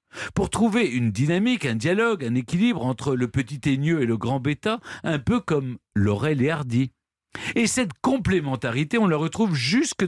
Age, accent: 50-69, French